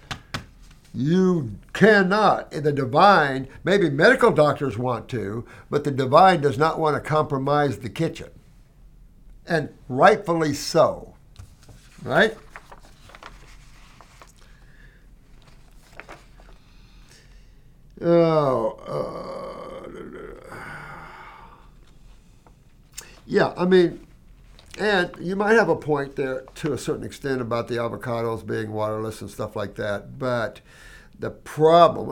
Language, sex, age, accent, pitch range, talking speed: English, male, 60-79, American, 115-155 Hz, 95 wpm